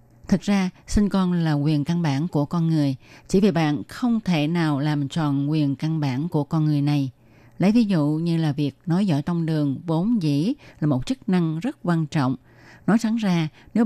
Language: Vietnamese